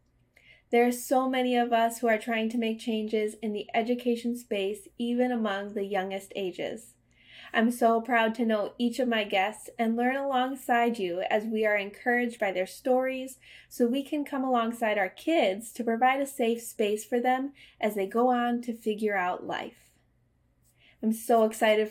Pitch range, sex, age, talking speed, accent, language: 215-250 Hz, female, 20-39, 180 wpm, American, English